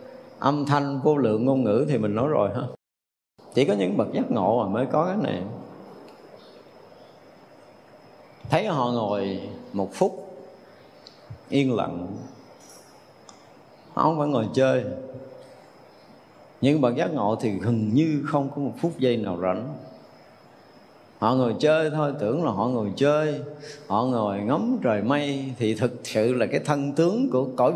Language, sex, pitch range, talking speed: Vietnamese, male, 120-155 Hz, 155 wpm